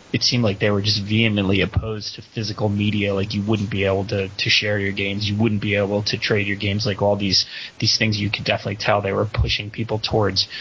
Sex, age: male, 20-39